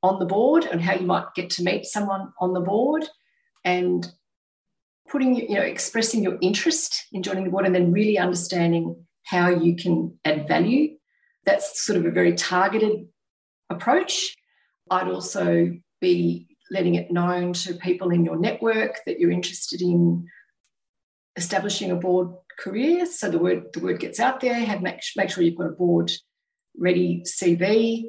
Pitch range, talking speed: 175-215 Hz, 165 wpm